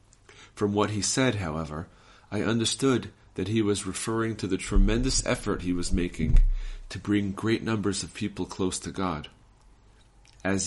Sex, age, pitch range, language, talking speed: male, 40-59, 90-110 Hz, English, 155 wpm